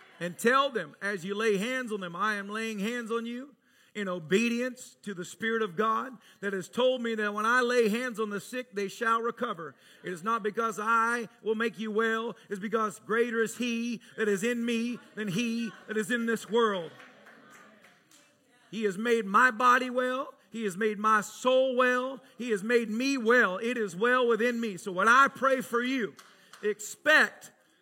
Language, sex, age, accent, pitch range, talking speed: English, male, 40-59, American, 200-240 Hz, 200 wpm